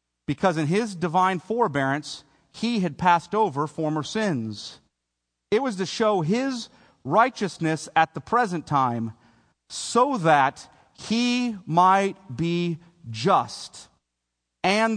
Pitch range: 120-155 Hz